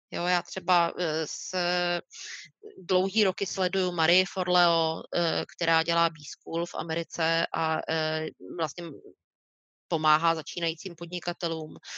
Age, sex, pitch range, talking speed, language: 30-49, female, 160-180 Hz, 90 wpm, Slovak